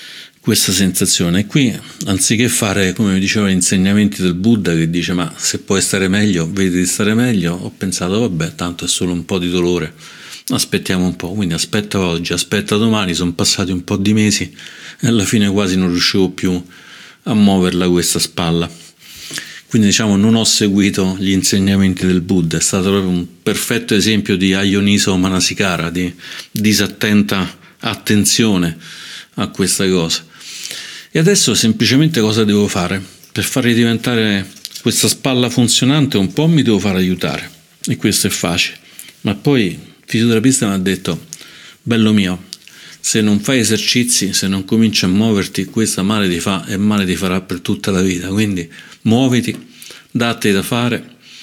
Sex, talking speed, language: male, 160 wpm, Italian